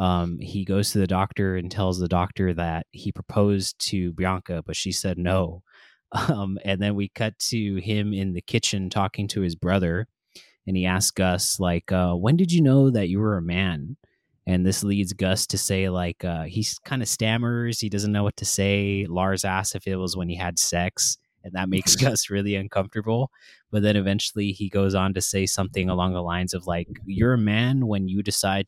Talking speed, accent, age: 210 wpm, American, 20-39